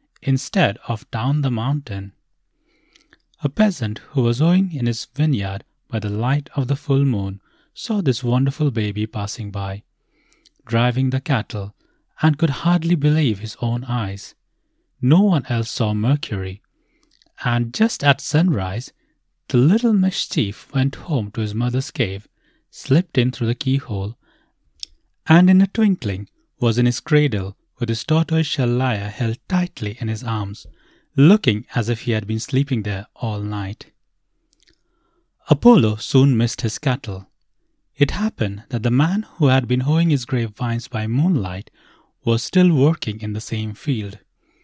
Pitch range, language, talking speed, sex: 110-150 Hz, English, 150 wpm, male